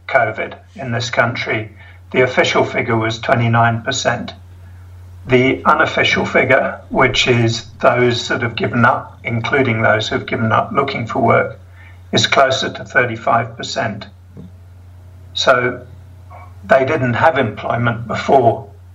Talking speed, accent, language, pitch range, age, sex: 115 wpm, British, English, 90-125 Hz, 50-69, male